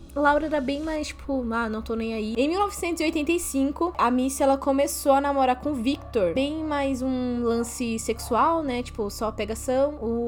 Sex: female